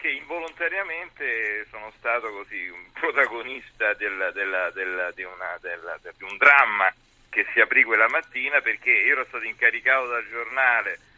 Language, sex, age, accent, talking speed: Italian, male, 40-59, native, 145 wpm